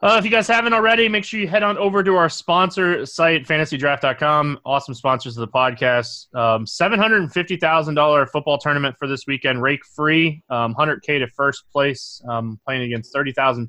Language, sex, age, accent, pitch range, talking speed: English, male, 20-39, American, 120-150 Hz, 205 wpm